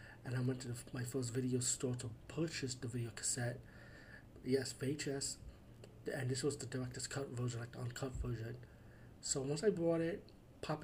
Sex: male